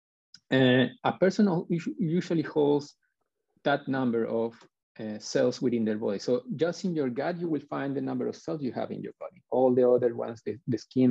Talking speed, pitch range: 205 wpm, 120-160 Hz